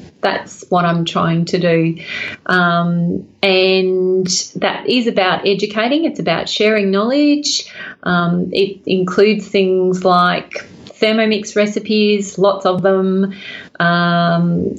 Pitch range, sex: 185-225 Hz, female